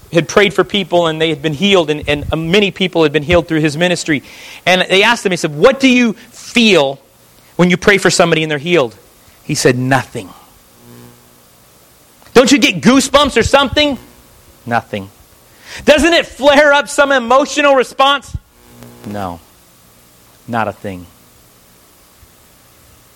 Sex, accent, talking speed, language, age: male, American, 150 wpm, English, 40-59